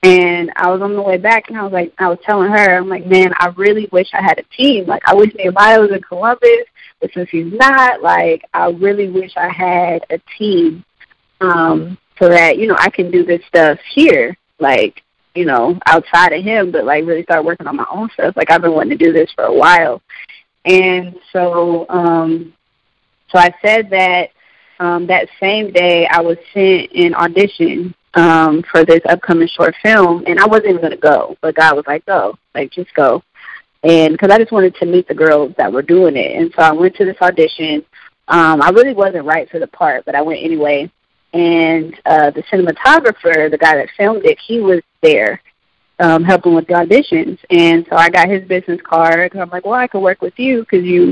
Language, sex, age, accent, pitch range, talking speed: English, female, 20-39, American, 165-200 Hz, 215 wpm